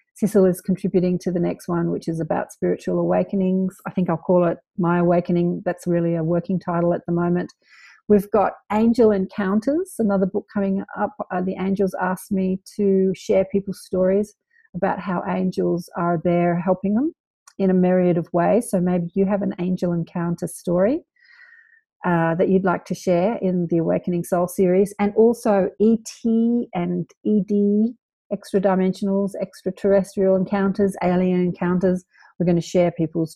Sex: female